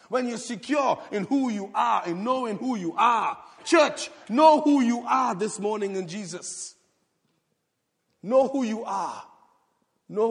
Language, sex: English, male